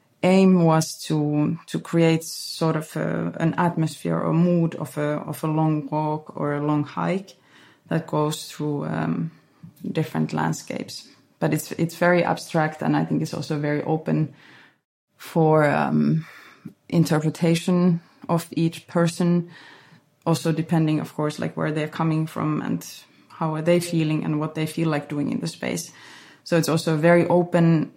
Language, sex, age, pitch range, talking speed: English, female, 20-39, 150-170 Hz, 160 wpm